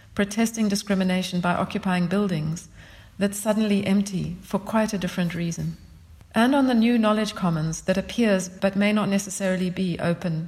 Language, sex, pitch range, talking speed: English, female, 165-205 Hz, 155 wpm